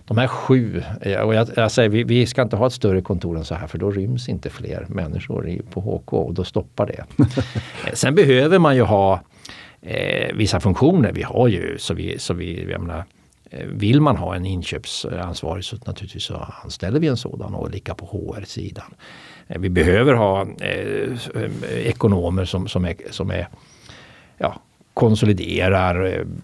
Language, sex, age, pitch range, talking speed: Swedish, male, 60-79, 95-120 Hz, 170 wpm